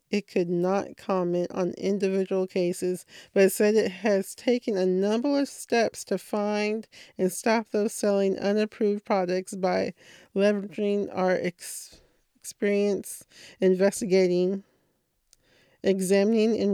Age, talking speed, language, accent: 40-59, 110 wpm, English, American